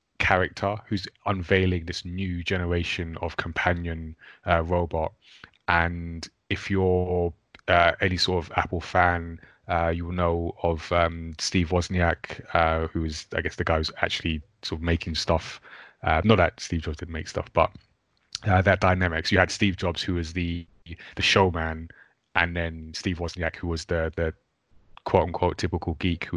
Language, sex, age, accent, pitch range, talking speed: English, male, 20-39, British, 85-90 Hz, 170 wpm